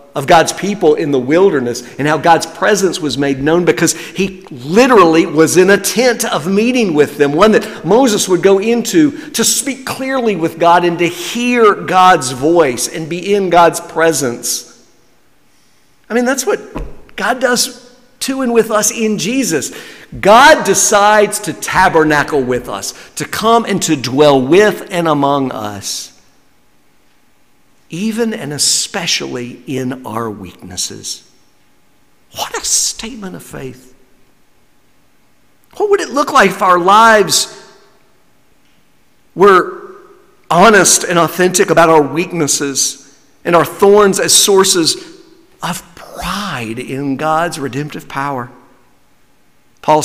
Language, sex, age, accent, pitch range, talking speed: English, male, 50-69, American, 140-210 Hz, 130 wpm